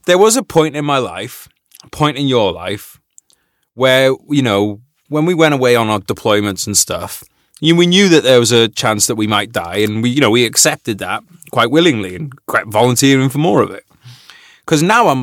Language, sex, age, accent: English, male, 30-49, British